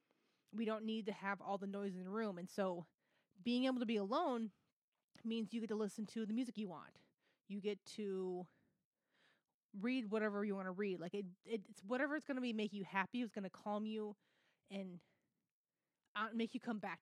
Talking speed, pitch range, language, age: 205 wpm, 190-225 Hz, English, 20-39